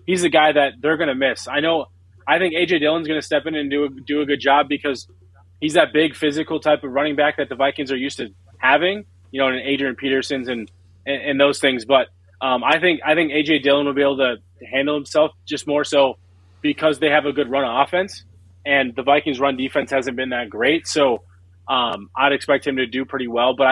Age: 20-39